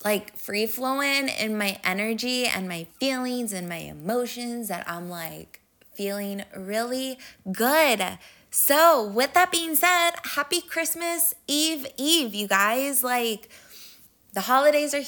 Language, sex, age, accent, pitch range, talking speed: English, female, 20-39, American, 185-235 Hz, 125 wpm